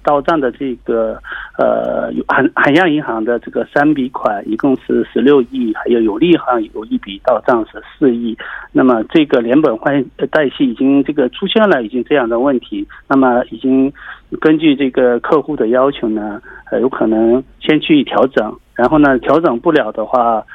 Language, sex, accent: Korean, male, Chinese